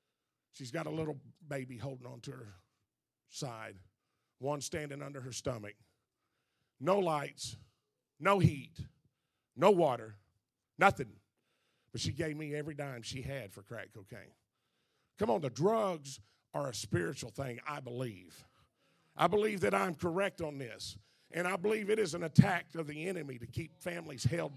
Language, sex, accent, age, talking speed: English, male, American, 40-59, 155 wpm